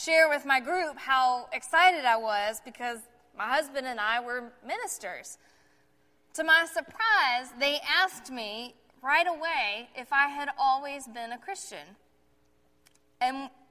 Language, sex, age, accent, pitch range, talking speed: English, female, 20-39, American, 245-325 Hz, 135 wpm